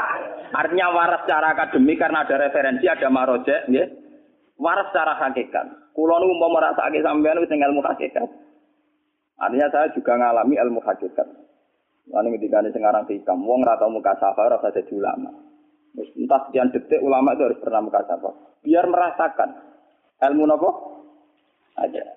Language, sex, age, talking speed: Indonesian, male, 20-39, 140 wpm